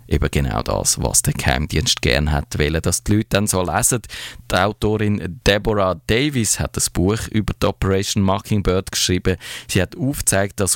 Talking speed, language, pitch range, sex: 165 wpm, German, 80-105 Hz, male